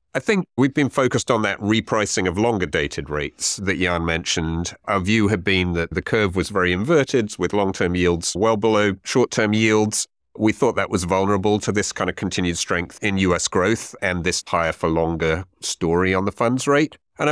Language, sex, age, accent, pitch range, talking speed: English, male, 40-59, British, 90-110 Hz, 200 wpm